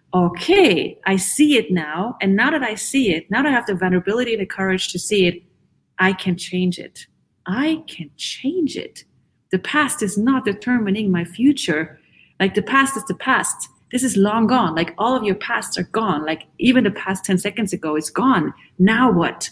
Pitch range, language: 175-215 Hz, English